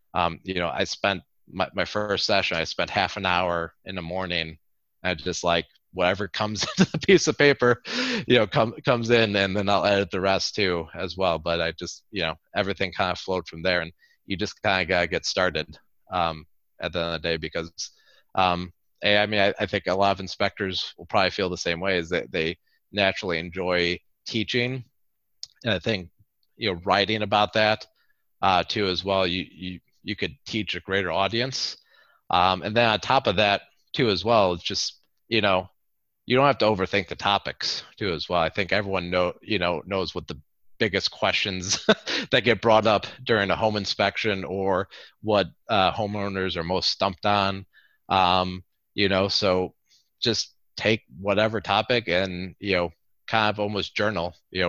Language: English